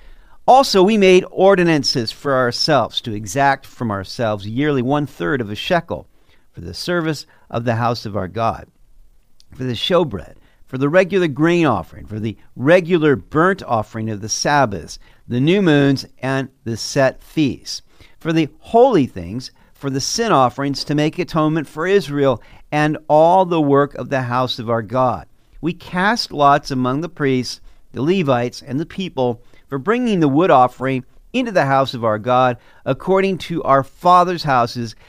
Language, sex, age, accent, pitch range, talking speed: English, male, 50-69, American, 115-160 Hz, 165 wpm